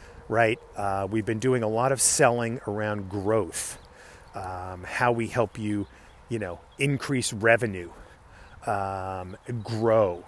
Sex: male